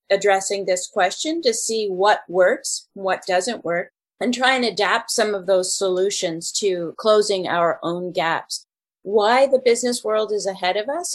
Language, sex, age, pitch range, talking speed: English, female, 30-49, 180-230 Hz, 165 wpm